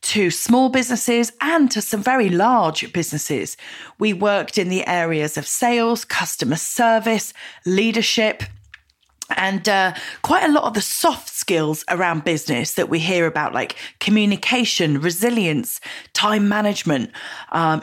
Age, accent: 30-49, British